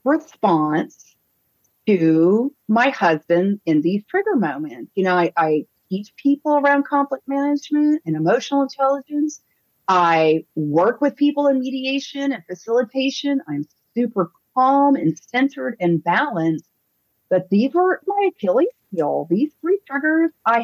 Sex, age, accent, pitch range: female, 40-59, American, 165-265 Hz